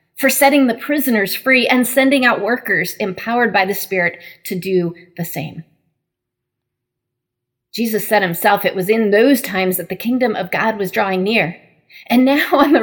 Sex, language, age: female, English, 30-49